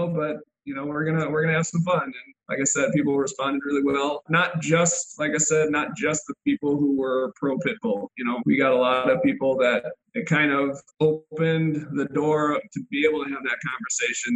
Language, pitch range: English, 135-180 Hz